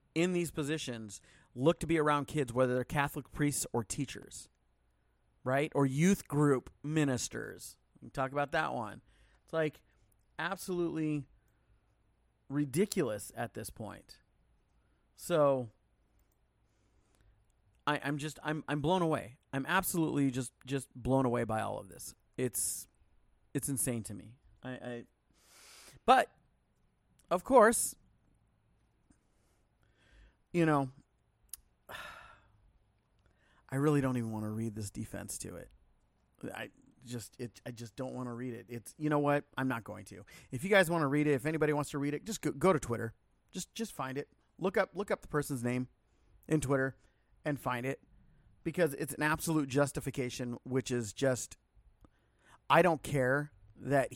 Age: 30-49